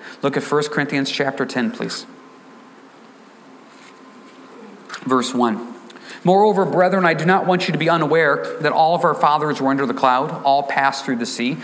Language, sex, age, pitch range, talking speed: English, male, 40-59, 150-215 Hz, 170 wpm